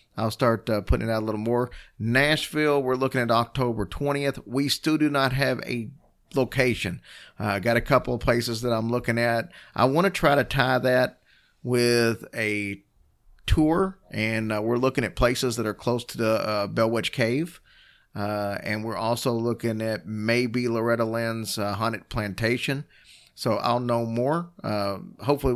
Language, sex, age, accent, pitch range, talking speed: English, male, 40-59, American, 105-125 Hz, 175 wpm